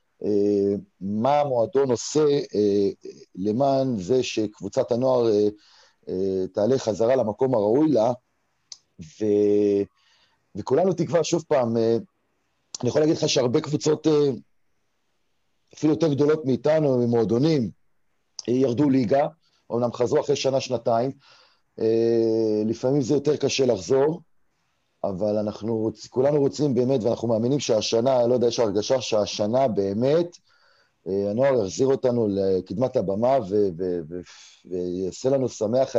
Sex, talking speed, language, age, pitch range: male, 110 wpm, Hebrew, 40-59, 105-140 Hz